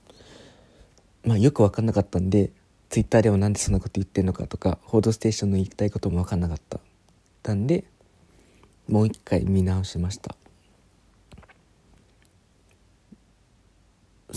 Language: Japanese